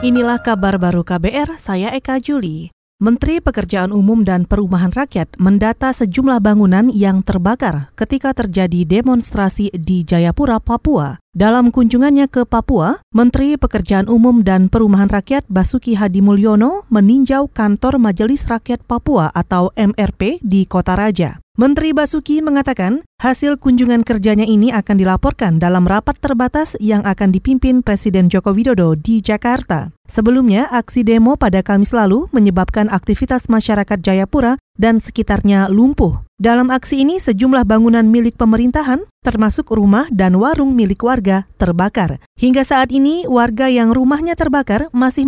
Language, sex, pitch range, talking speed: Indonesian, female, 200-255 Hz, 135 wpm